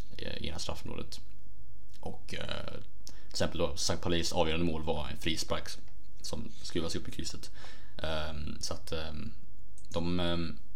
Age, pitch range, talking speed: 20-39, 80-105 Hz, 150 wpm